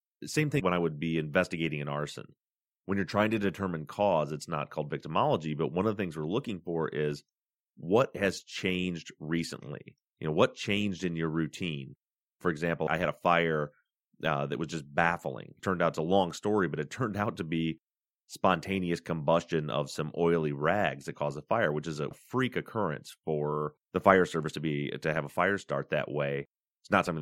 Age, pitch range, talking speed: 30-49, 75-90 Hz, 205 wpm